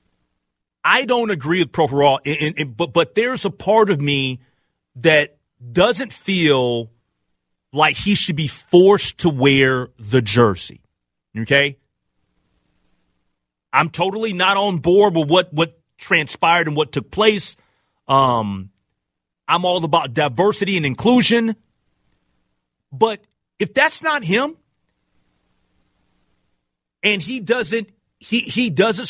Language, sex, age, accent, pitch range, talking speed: English, male, 40-59, American, 140-215 Hz, 115 wpm